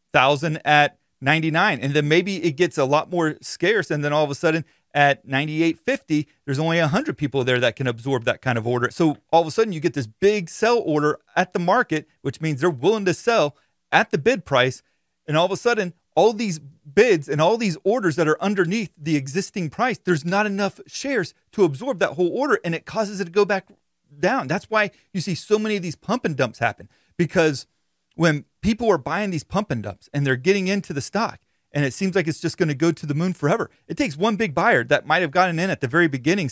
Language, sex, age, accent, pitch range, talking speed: English, male, 30-49, American, 145-195 Hz, 235 wpm